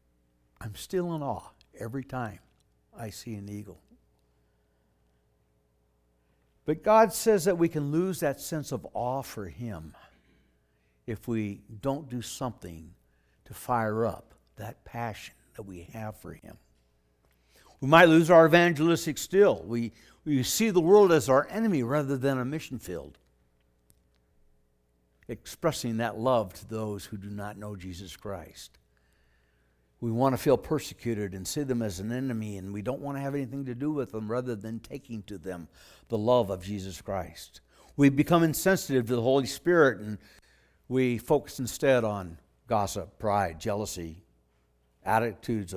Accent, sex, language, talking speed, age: American, male, English, 150 wpm, 60-79